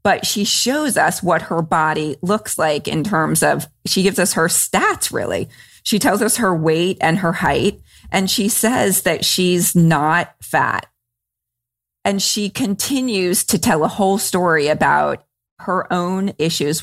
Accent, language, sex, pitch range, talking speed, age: American, English, female, 165-210 Hz, 160 wpm, 30-49